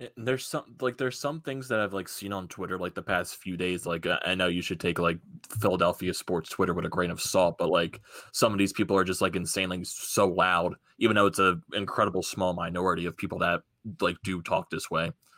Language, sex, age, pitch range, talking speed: English, male, 20-39, 90-115 Hz, 235 wpm